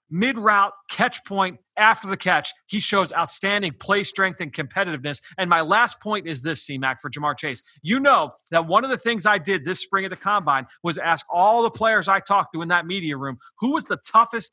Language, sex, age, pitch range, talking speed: English, male, 30-49, 165-220 Hz, 220 wpm